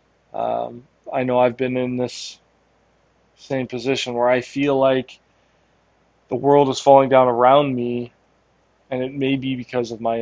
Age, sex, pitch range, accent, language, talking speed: 20-39, male, 120-135 Hz, American, English, 160 wpm